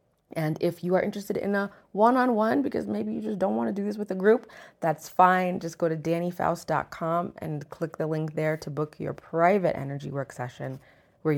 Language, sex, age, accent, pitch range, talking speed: English, female, 20-39, American, 145-200 Hz, 205 wpm